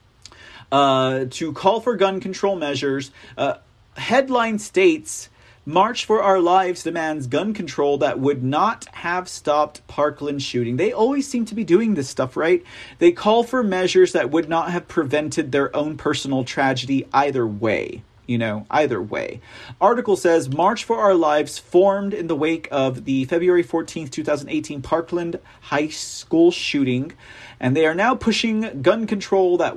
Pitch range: 130-190 Hz